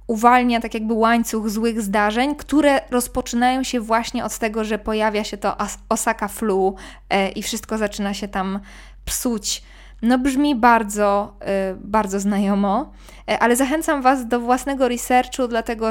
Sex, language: female, Polish